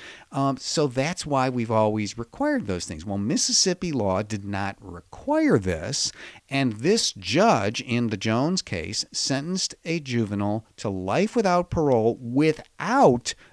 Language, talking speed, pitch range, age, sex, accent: English, 140 wpm, 105-165 Hz, 50-69, male, American